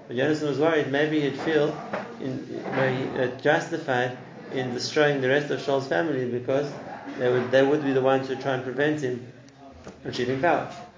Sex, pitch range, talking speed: male, 125-150 Hz, 185 wpm